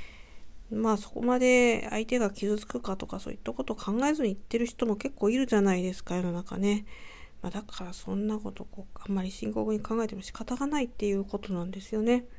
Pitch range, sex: 170-225 Hz, female